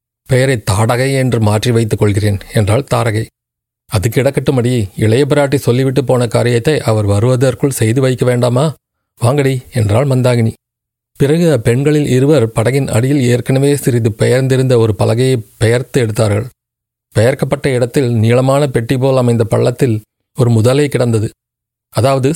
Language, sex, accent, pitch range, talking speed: Tamil, male, native, 115-135 Hz, 120 wpm